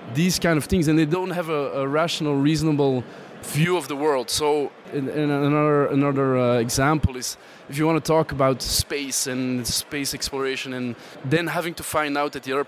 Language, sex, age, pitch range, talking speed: English, male, 20-39, 130-155 Hz, 205 wpm